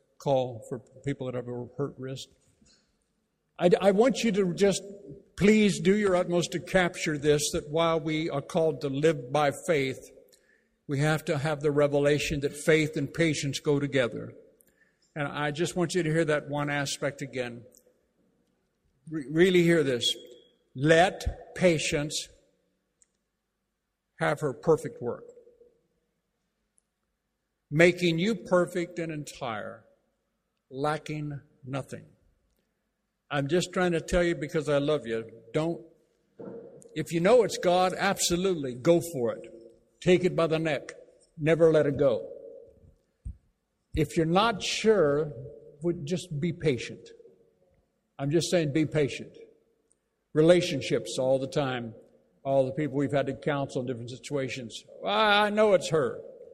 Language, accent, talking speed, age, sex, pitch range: English, American, 140 wpm, 60-79, male, 145-185 Hz